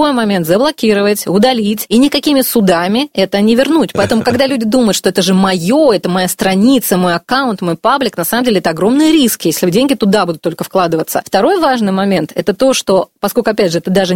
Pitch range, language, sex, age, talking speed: 185-240 Hz, Russian, female, 20-39, 200 wpm